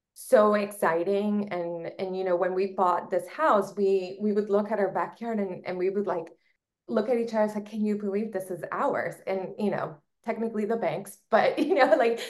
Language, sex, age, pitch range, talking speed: English, female, 20-39, 175-210 Hz, 220 wpm